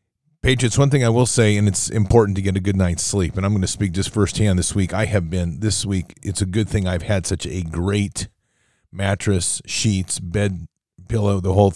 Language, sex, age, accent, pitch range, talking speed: English, male, 40-59, American, 90-110 Hz, 225 wpm